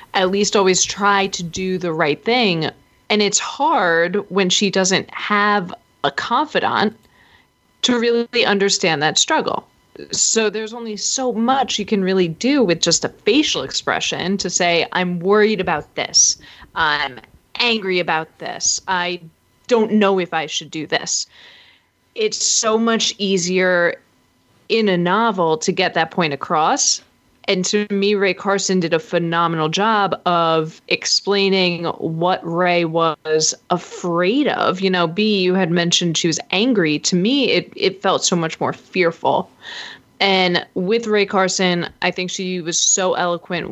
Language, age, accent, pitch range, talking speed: English, 30-49, American, 170-210 Hz, 150 wpm